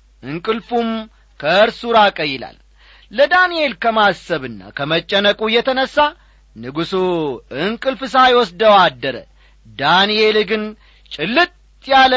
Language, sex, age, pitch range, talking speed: Amharic, male, 40-59, 165-235 Hz, 75 wpm